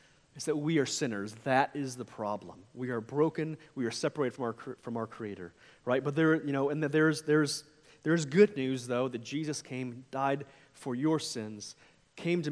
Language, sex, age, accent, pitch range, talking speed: English, male, 30-49, American, 125-155 Hz, 195 wpm